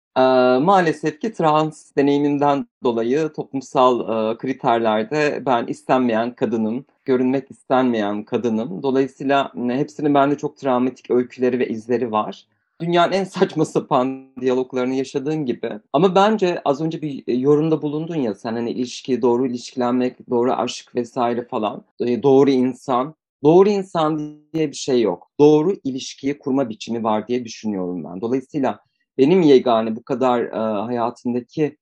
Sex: male